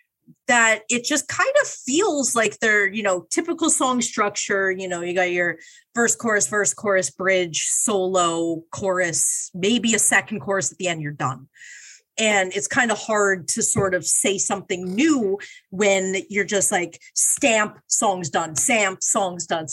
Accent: American